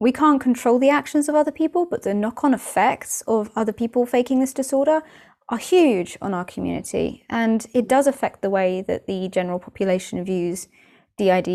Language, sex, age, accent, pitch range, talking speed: English, female, 20-39, British, 185-230 Hz, 180 wpm